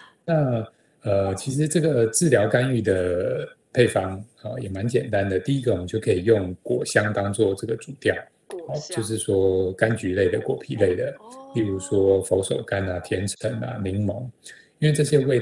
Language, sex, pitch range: Chinese, male, 100-135 Hz